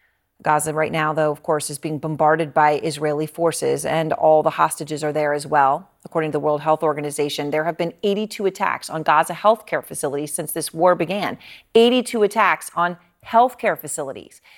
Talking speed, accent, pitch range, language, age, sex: 190 wpm, American, 160-205 Hz, English, 40-59, female